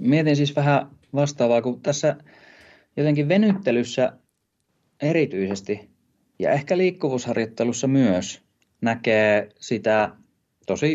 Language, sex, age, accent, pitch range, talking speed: Finnish, male, 30-49, native, 105-135 Hz, 90 wpm